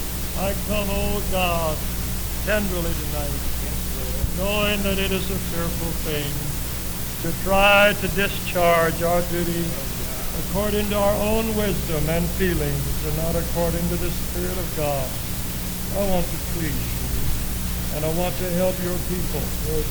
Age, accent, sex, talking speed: 60-79, American, male, 140 wpm